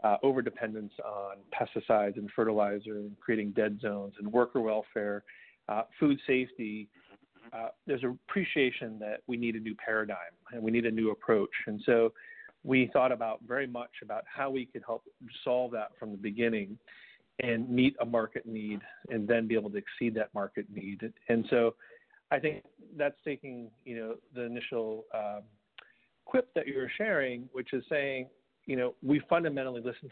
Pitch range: 105-130 Hz